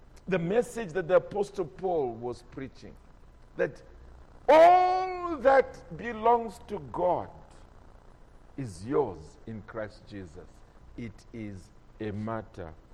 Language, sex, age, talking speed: English, male, 50-69, 105 wpm